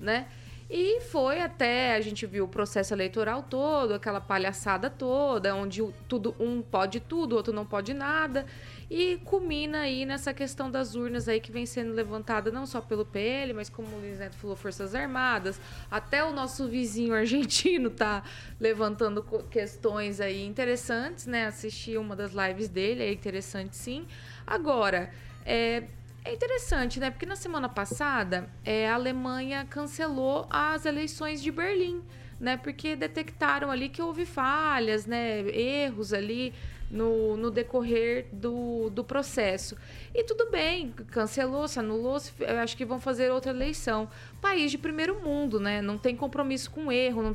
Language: Portuguese